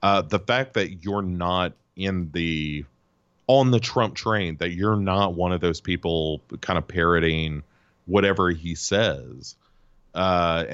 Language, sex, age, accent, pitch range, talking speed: English, male, 30-49, American, 85-110 Hz, 145 wpm